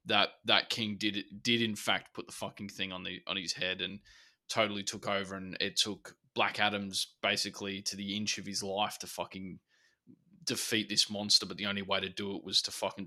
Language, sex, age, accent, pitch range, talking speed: English, male, 20-39, Australian, 95-115 Hz, 215 wpm